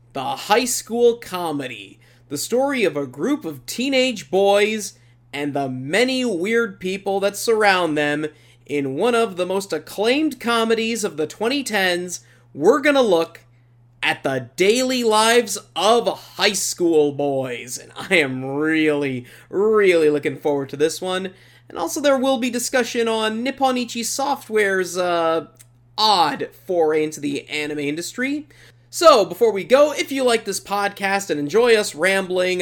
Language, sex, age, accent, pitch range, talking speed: English, male, 30-49, American, 155-235 Hz, 145 wpm